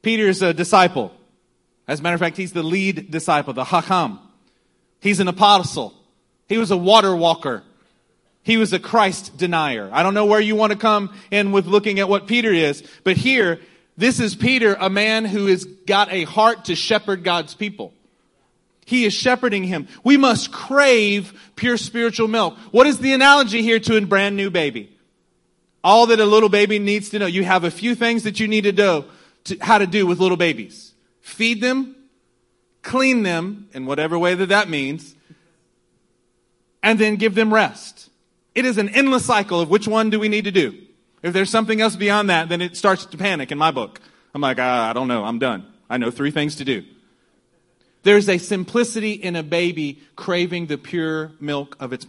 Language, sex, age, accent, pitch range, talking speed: English, male, 30-49, American, 170-220 Hz, 195 wpm